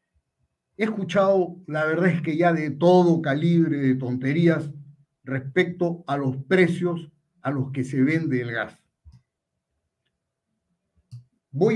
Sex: male